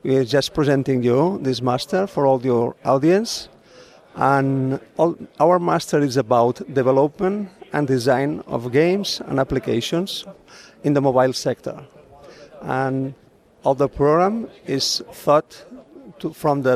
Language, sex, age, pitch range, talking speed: English, male, 50-69, 130-155 Hz, 135 wpm